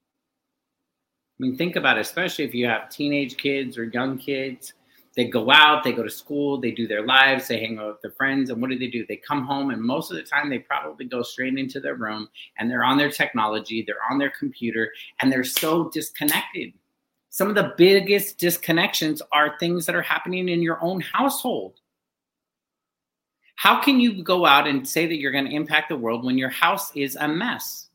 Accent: American